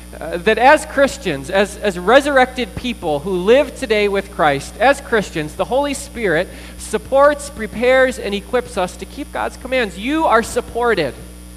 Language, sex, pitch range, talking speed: English, male, 155-235 Hz, 155 wpm